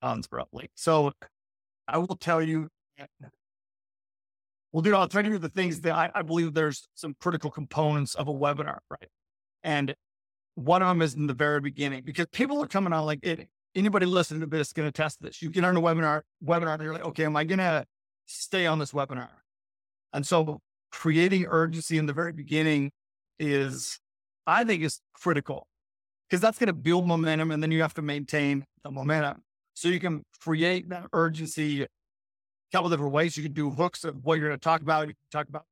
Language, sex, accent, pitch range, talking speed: English, male, American, 145-170 Hz, 205 wpm